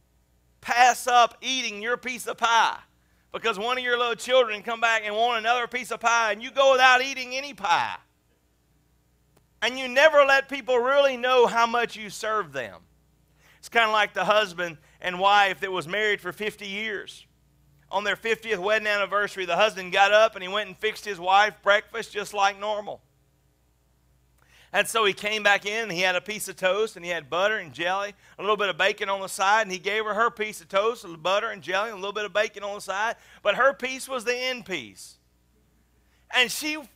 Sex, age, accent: male, 40-59, American